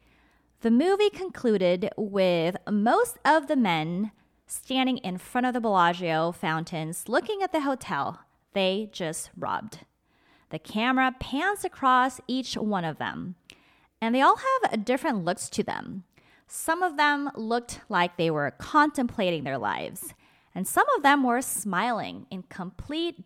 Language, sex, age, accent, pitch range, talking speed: English, female, 20-39, American, 185-275 Hz, 145 wpm